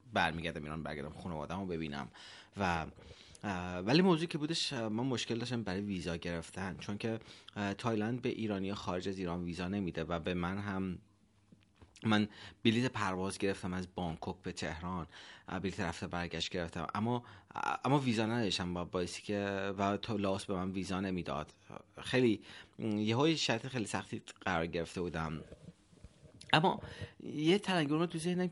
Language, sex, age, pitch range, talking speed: Persian, male, 30-49, 90-115 Hz, 150 wpm